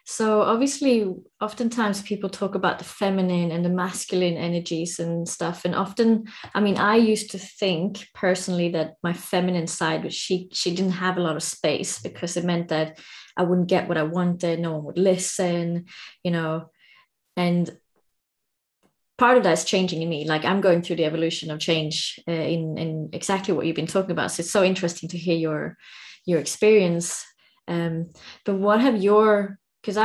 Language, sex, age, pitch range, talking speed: English, female, 20-39, 170-195 Hz, 180 wpm